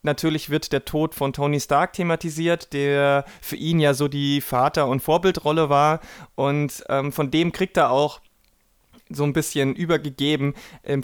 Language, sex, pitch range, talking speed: German, male, 140-170 Hz, 165 wpm